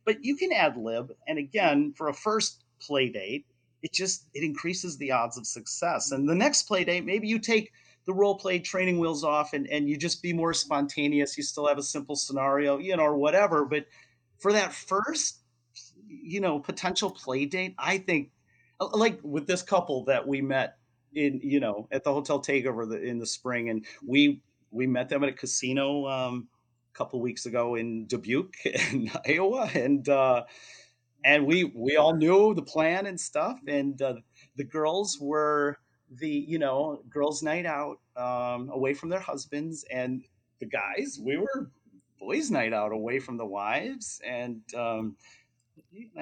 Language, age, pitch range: English, 40-59, 125-175 Hz